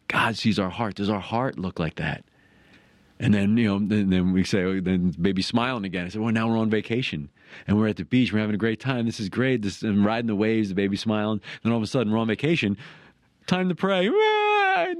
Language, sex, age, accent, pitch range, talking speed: English, male, 40-59, American, 95-115 Hz, 250 wpm